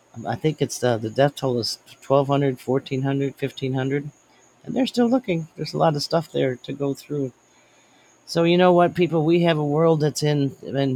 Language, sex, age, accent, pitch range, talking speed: English, male, 40-59, American, 120-145 Hz, 195 wpm